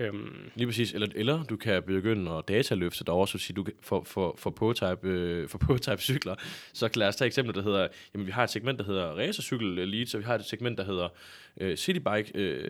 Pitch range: 100-125 Hz